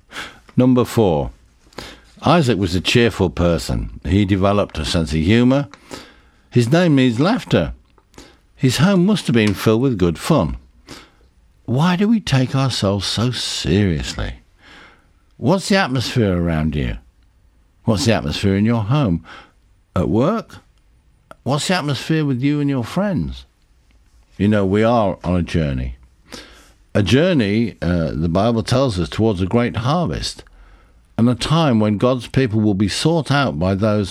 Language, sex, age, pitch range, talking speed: English, male, 60-79, 90-130 Hz, 150 wpm